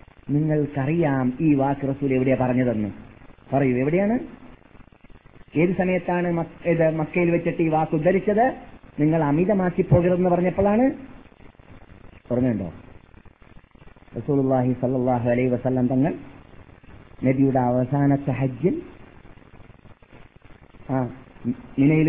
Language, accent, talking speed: Malayalam, native, 75 wpm